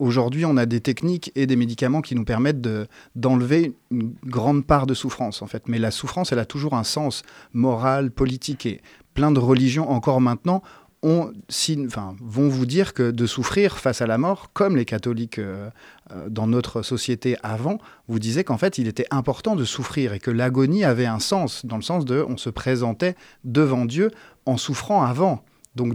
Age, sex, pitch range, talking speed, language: 30-49, male, 115-145 Hz, 195 wpm, French